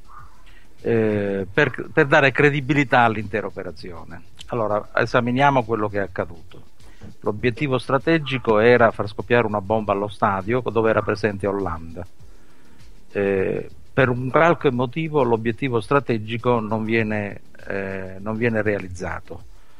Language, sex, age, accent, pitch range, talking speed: Italian, male, 50-69, native, 100-130 Hz, 110 wpm